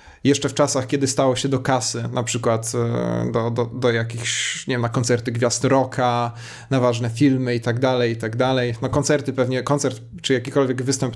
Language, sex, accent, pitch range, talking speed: Polish, male, native, 125-140 Hz, 190 wpm